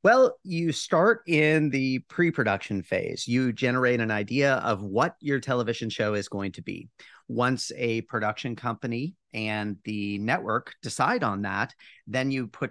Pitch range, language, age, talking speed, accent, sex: 105-135 Hz, English, 40-59, 155 wpm, American, male